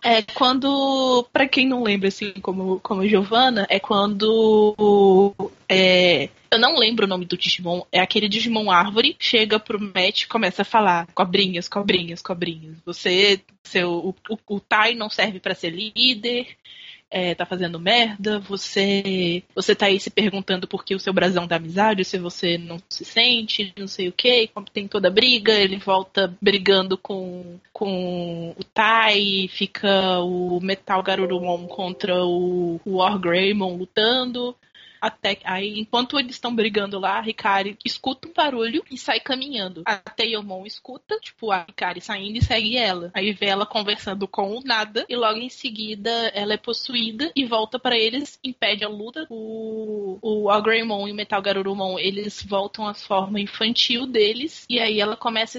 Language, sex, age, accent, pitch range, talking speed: Portuguese, female, 20-39, Brazilian, 190-225 Hz, 165 wpm